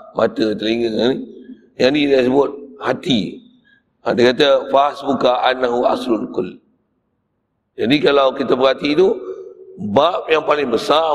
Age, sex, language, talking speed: 50-69, male, Malay, 115 wpm